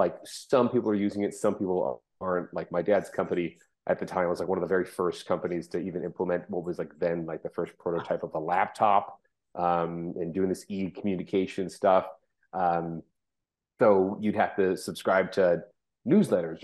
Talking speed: 190 wpm